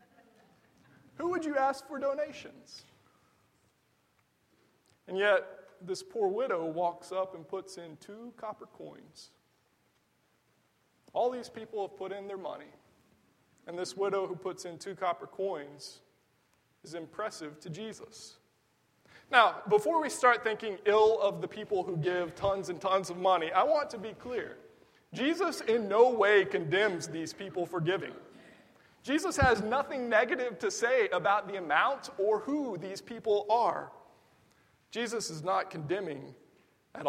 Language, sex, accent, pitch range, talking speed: English, male, American, 175-270 Hz, 145 wpm